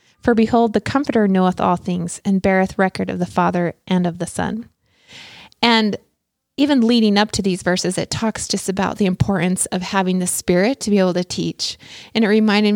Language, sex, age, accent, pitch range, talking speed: English, female, 20-39, American, 185-215 Hz, 200 wpm